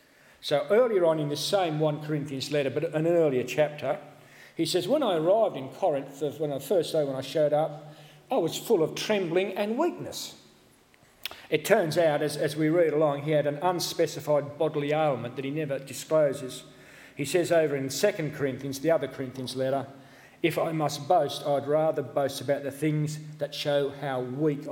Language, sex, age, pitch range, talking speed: English, male, 40-59, 140-170 Hz, 185 wpm